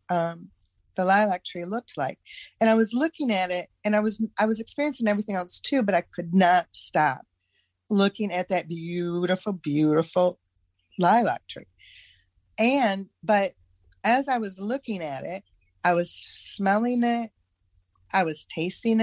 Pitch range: 160-200 Hz